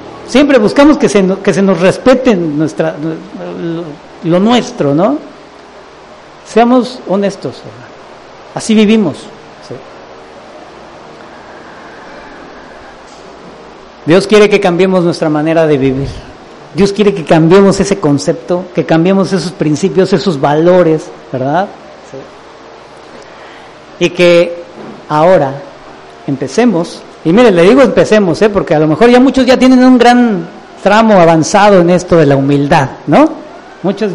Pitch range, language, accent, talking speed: 145-215 Hz, English, Mexican, 115 wpm